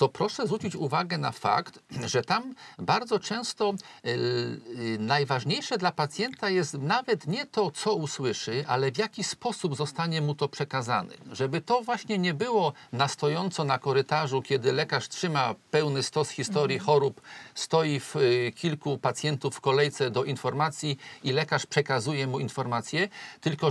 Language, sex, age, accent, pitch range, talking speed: Polish, male, 50-69, native, 130-180 Hz, 140 wpm